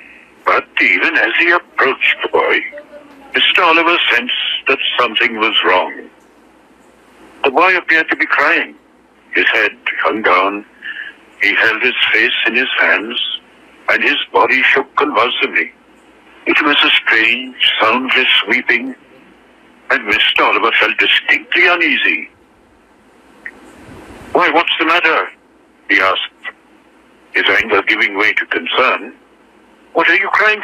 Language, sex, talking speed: Marathi, male, 125 wpm